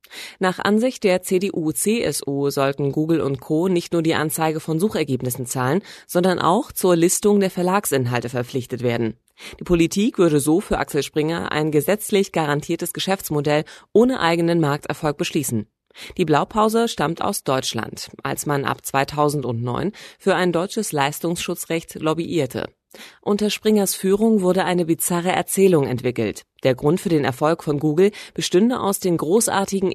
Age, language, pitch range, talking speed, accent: 30-49, German, 140-190 Hz, 140 wpm, German